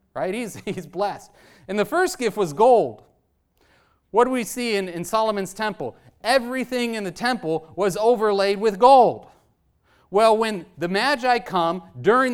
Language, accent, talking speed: English, American, 155 wpm